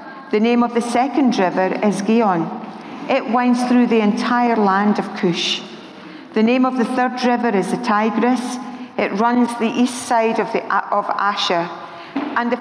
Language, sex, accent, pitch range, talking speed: English, female, British, 190-245 Hz, 170 wpm